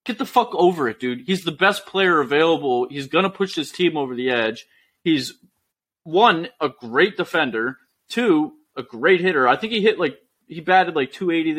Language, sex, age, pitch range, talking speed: English, male, 20-39, 120-165 Hz, 195 wpm